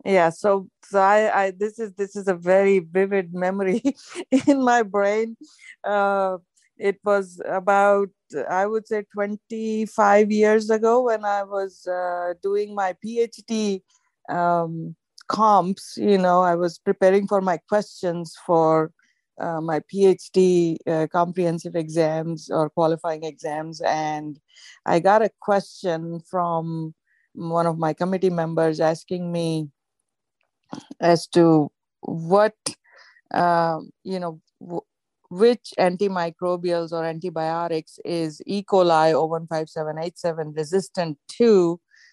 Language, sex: English, female